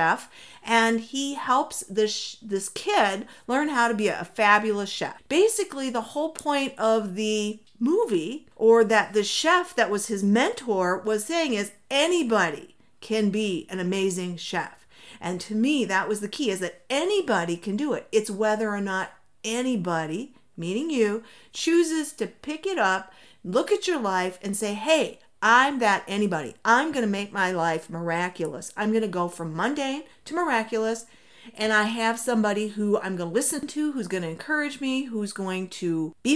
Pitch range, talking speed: 190-260 Hz, 175 wpm